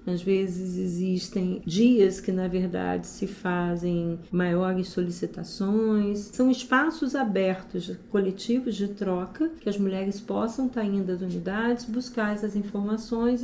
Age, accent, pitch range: 40-59, Brazilian, 185-230 Hz